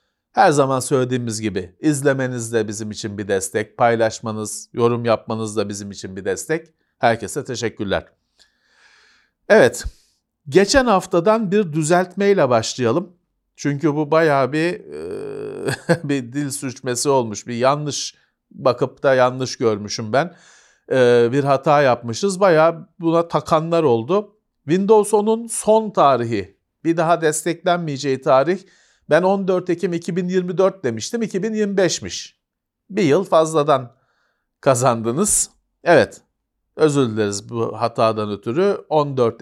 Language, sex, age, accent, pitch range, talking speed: Turkish, male, 40-59, native, 115-170 Hz, 115 wpm